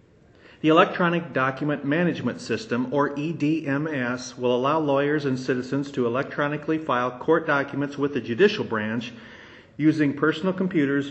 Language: English